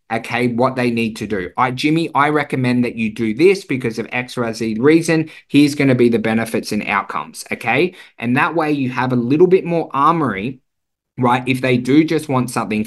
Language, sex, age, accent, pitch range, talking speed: English, male, 20-39, Australian, 125-150 Hz, 210 wpm